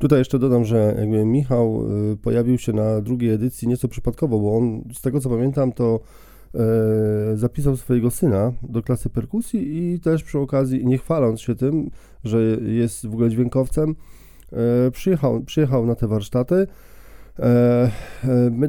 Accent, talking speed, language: native, 145 wpm, Polish